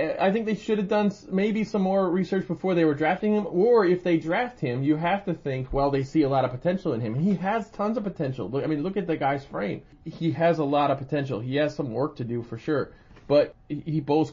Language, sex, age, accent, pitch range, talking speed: English, male, 30-49, American, 125-165 Hz, 265 wpm